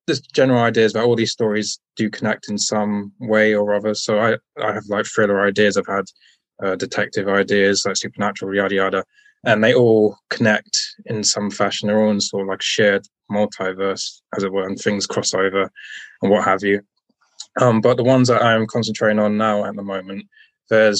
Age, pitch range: 20-39, 100-110 Hz